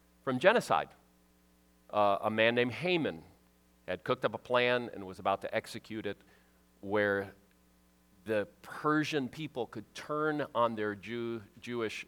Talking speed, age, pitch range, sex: 140 wpm, 40-59, 75-125 Hz, male